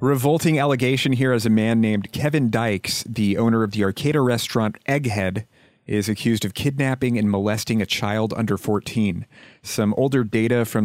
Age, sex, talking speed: 30-49, male, 170 wpm